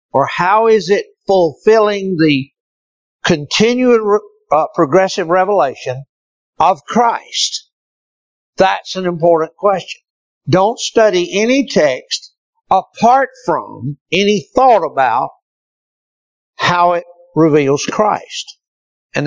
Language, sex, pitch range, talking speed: English, male, 150-225 Hz, 95 wpm